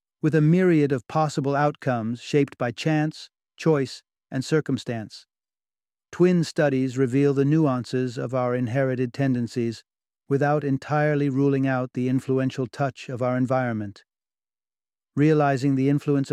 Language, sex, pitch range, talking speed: English, male, 130-155 Hz, 125 wpm